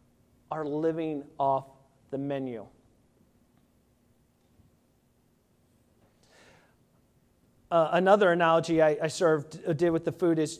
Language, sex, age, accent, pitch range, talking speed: English, male, 30-49, American, 155-200 Hz, 90 wpm